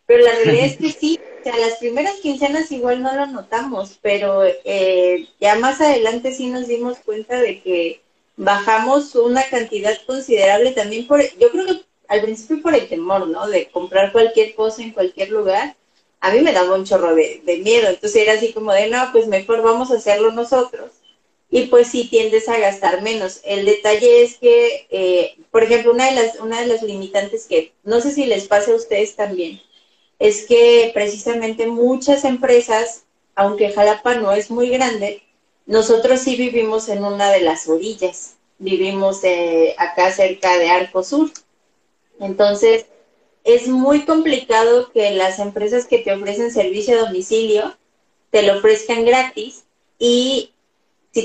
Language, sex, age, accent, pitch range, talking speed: Spanish, female, 30-49, Mexican, 200-260 Hz, 165 wpm